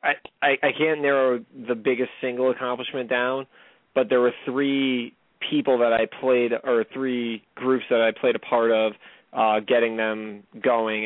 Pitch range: 110-125 Hz